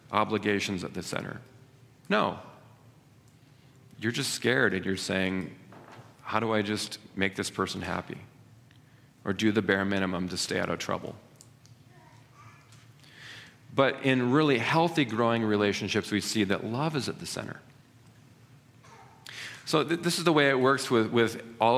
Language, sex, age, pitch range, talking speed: English, male, 40-59, 110-135 Hz, 150 wpm